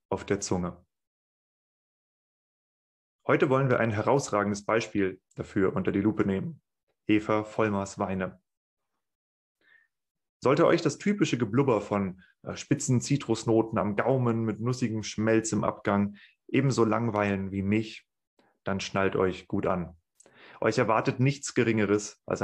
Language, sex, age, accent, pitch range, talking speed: German, male, 30-49, German, 100-120 Hz, 125 wpm